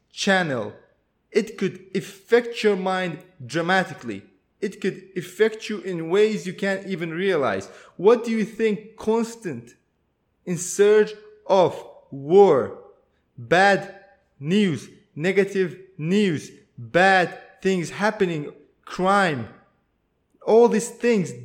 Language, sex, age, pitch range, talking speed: English, male, 20-39, 175-235 Hz, 105 wpm